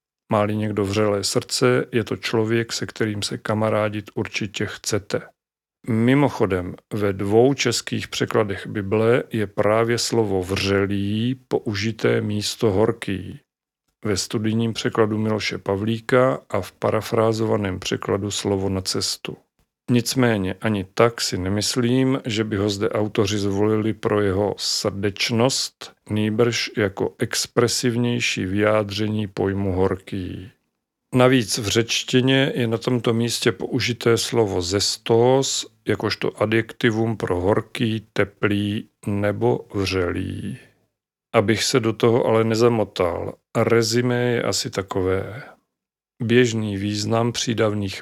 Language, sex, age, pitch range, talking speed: Czech, male, 40-59, 100-120 Hz, 110 wpm